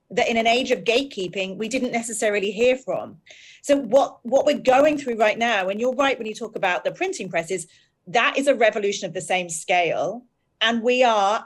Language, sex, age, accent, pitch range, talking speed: English, female, 40-59, British, 185-250 Hz, 215 wpm